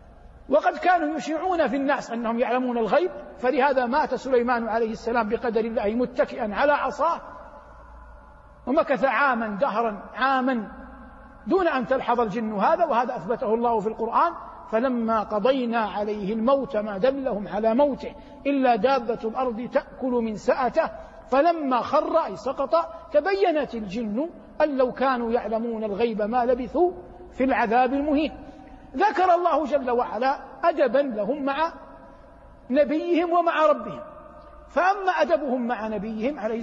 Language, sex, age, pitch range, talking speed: Arabic, male, 50-69, 235-300 Hz, 125 wpm